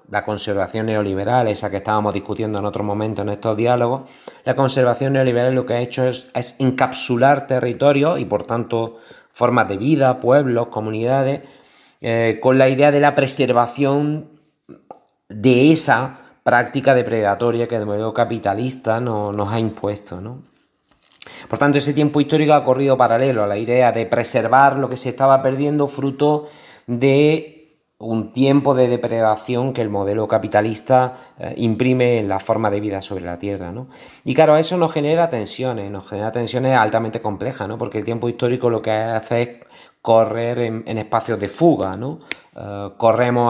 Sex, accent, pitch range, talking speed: male, Spanish, 110-130 Hz, 165 wpm